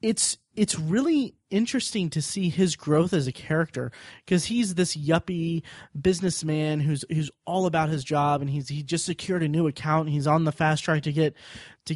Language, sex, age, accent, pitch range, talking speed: English, male, 20-39, American, 145-175 Hz, 195 wpm